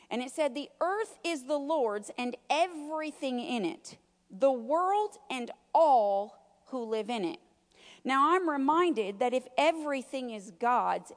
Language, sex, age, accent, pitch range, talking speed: English, female, 40-59, American, 220-300 Hz, 150 wpm